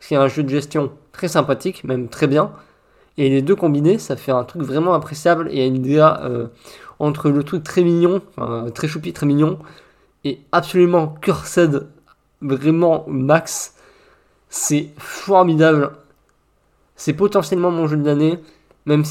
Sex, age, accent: male, 20-39, French